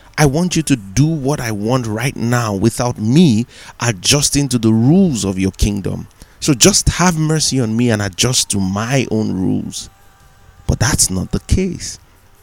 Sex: male